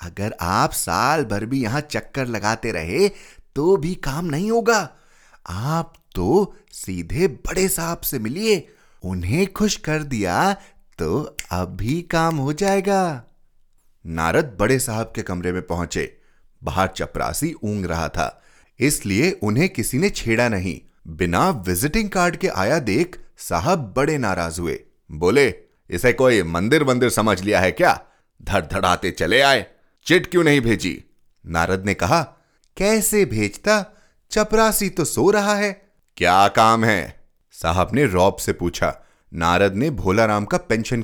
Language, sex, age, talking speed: Hindi, male, 30-49, 145 wpm